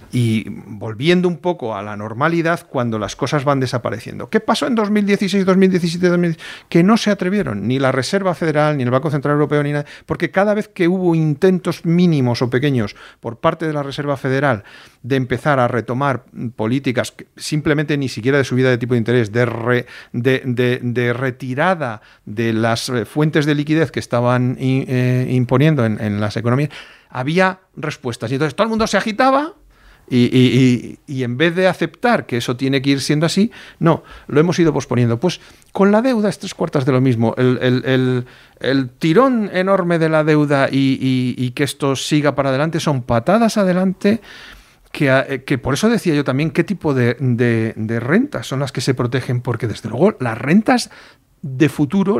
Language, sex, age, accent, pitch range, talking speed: Spanish, male, 50-69, Spanish, 125-175 Hz, 185 wpm